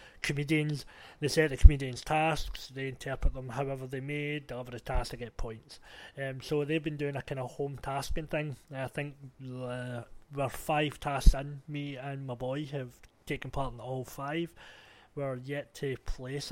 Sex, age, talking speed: male, 30-49, 180 wpm